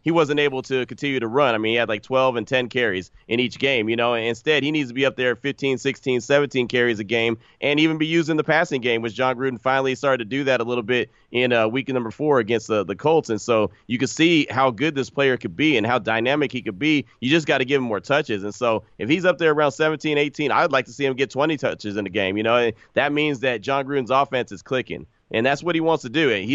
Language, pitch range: English, 120-150 Hz